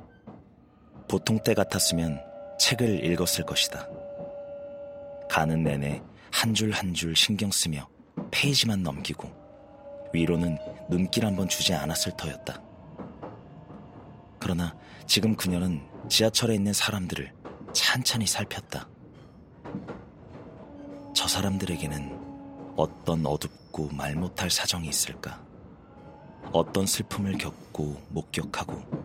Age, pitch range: 30-49, 80-105 Hz